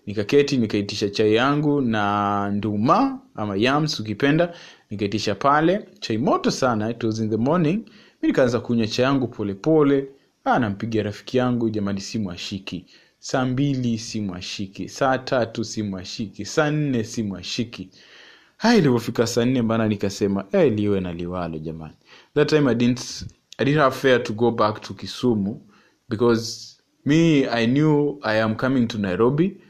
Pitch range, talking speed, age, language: 105-135 Hz, 155 wpm, 20-39, Swahili